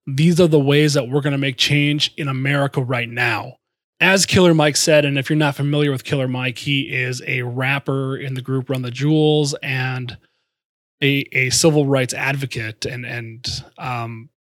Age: 30-49